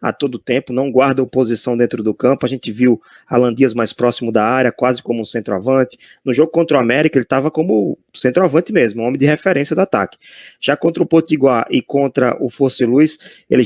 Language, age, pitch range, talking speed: Portuguese, 20-39, 120-140 Hz, 210 wpm